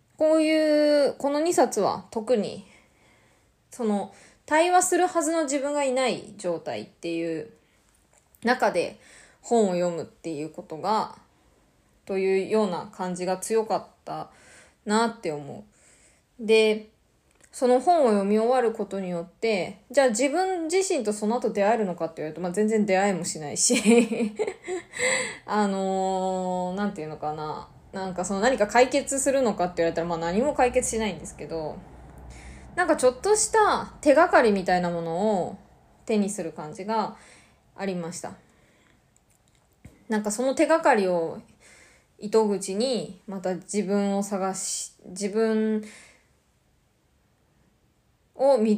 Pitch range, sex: 185-250 Hz, female